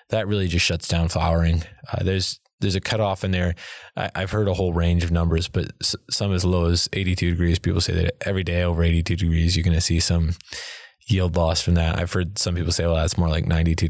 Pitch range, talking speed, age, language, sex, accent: 85-95 Hz, 240 wpm, 20-39, English, male, American